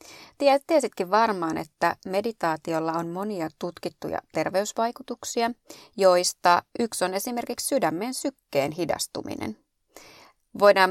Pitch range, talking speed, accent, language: 165-230 Hz, 90 wpm, native, Finnish